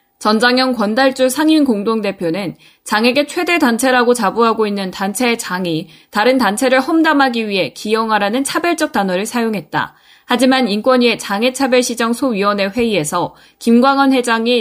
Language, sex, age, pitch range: Korean, female, 20-39, 195-250 Hz